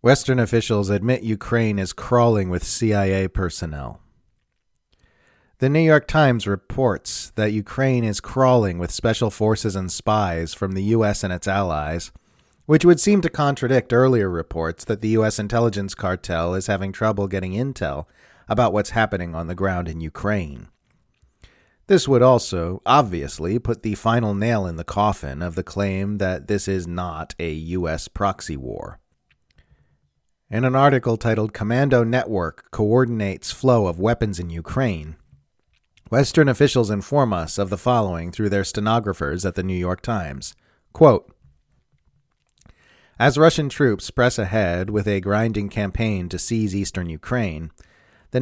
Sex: male